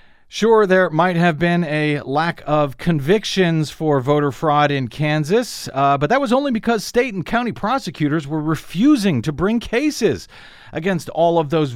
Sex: male